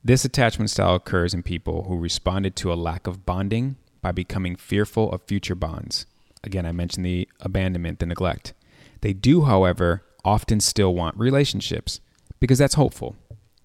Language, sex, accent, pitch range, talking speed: English, male, American, 90-115 Hz, 160 wpm